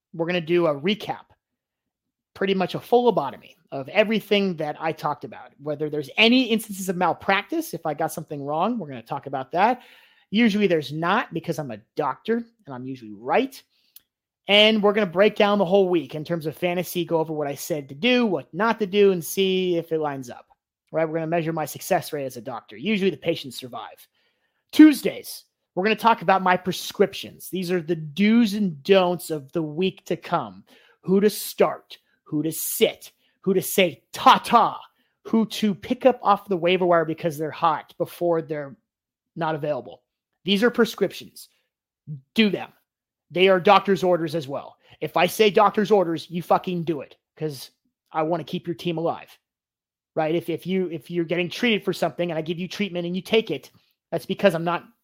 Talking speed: 200 wpm